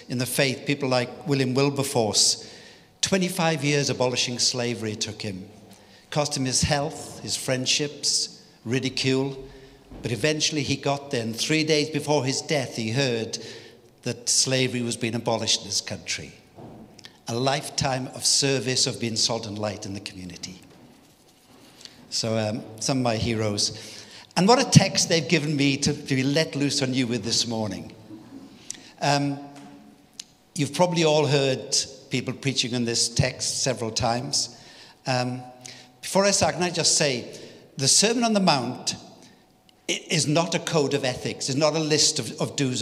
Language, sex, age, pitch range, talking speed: English, male, 60-79, 115-150 Hz, 160 wpm